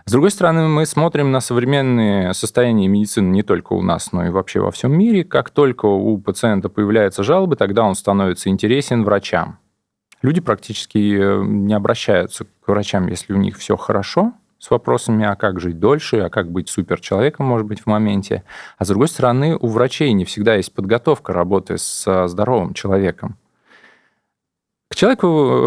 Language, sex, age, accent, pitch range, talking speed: Russian, male, 20-39, native, 100-130 Hz, 165 wpm